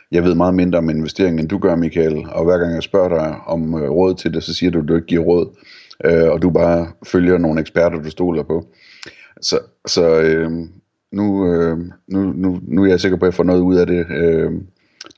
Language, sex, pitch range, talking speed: Danish, male, 80-90 Hz, 225 wpm